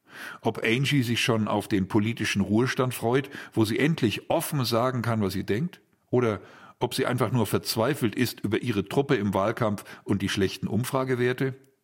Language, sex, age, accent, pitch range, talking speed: German, male, 50-69, German, 105-135 Hz, 170 wpm